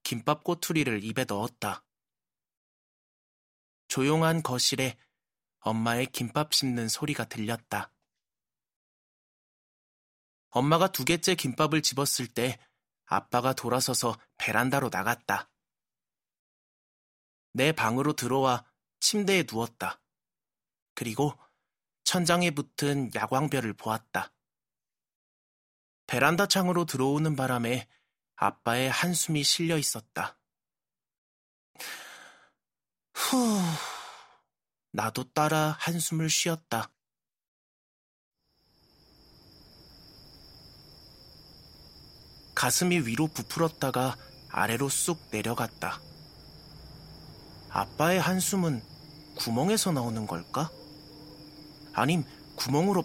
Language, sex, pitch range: Korean, male, 115-160 Hz